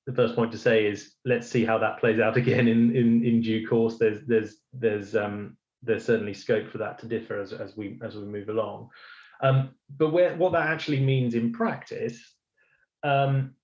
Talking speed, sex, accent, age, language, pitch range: 200 wpm, male, British, 30-49, English, 110-130 Hz